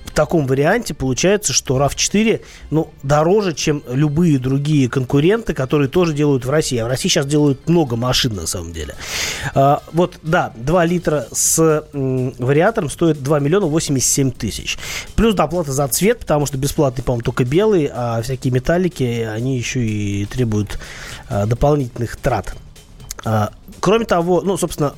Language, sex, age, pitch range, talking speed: Russian, male, 30-49, 125-160 Hz, 145 wpm